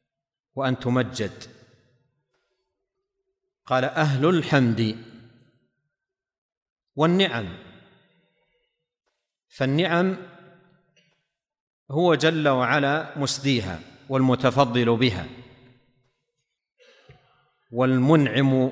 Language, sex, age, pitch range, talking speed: Arabic, male, 50-69, 125-165 Hz, 45 wpm